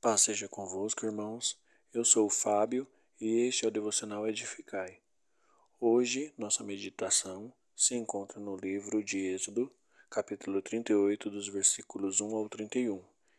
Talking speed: 135 wpm